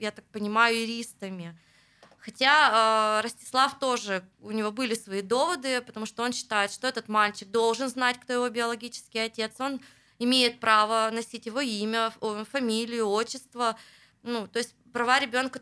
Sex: female